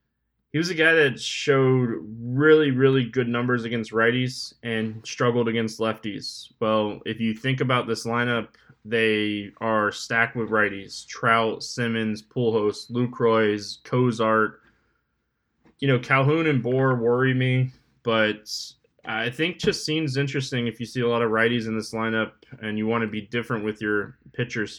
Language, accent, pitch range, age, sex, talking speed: English, American, 110-130 Hz, 20-39, male, 155 wpm